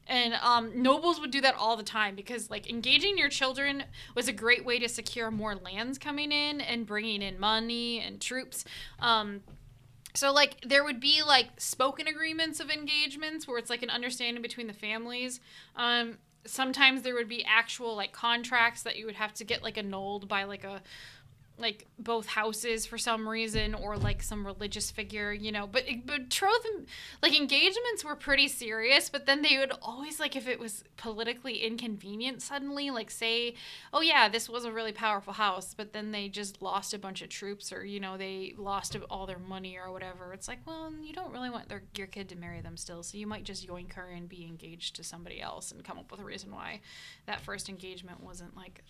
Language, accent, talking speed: English, American, 205 wpm